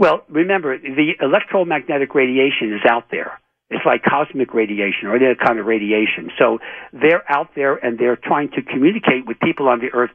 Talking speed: 185 wpm